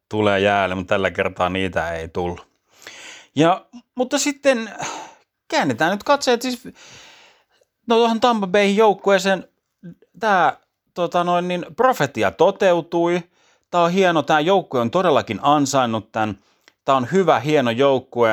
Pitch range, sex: 100-145 Hz, male